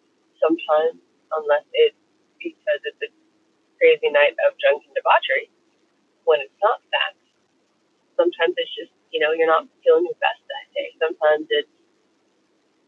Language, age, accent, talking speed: English, 30-49, American, 140 wpm